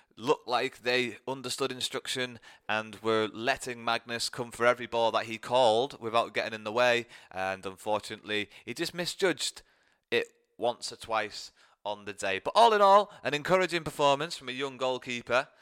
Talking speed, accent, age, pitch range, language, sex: 170 wpm, British, 20-39, 115-150 Hz, English, male